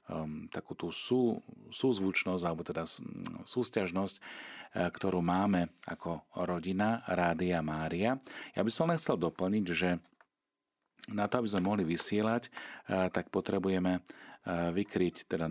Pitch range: 85-105 Hz